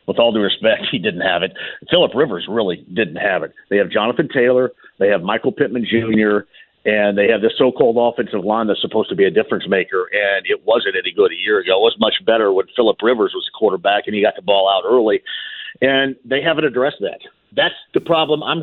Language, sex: English, male